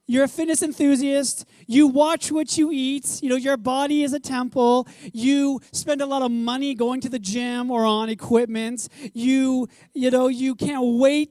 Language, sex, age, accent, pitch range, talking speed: English, male, 30-49, American, 195-265 Hz, 185 wpm